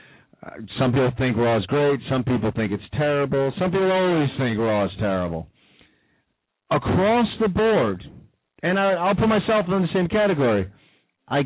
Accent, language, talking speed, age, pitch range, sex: American, English, 160 wpm, 40-59, 125-180 Hz, male